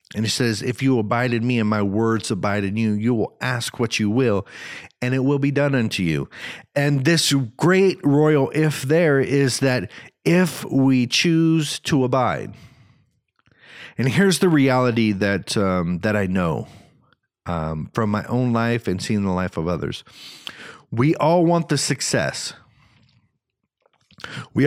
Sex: male